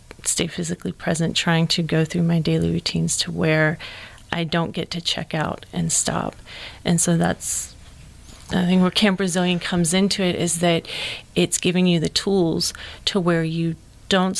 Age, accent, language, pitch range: 30-49, American, English, 155-175 Hz